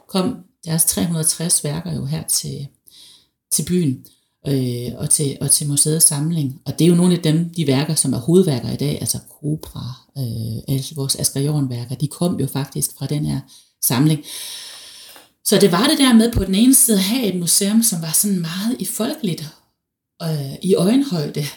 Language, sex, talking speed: Danish, female, 190 wpm